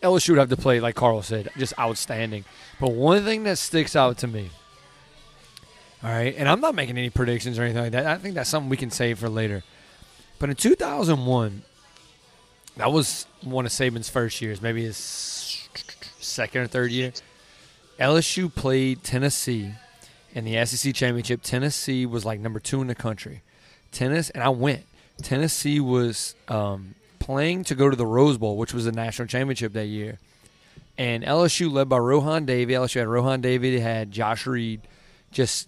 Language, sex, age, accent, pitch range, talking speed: English, male, 30-49, American, 115-135 Hz, 175 wpm